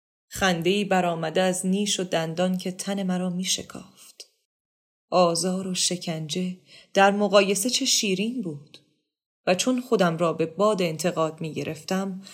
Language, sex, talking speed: Persian, female, 125 wpm